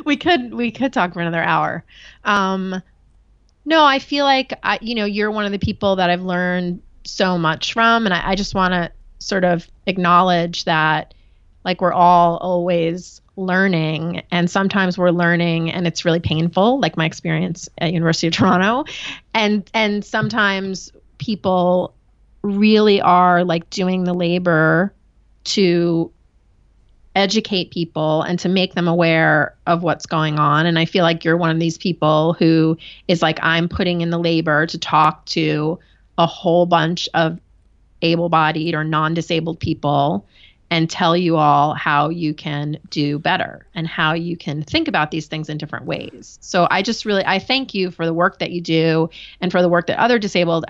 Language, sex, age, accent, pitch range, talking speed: English, female, 30-49, American, 160-185 Hz, 175 wpm